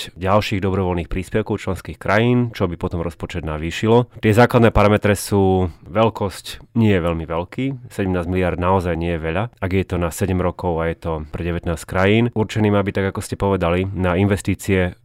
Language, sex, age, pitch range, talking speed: Slovak, male, 30-49, 85-100 Hz, 180 wpm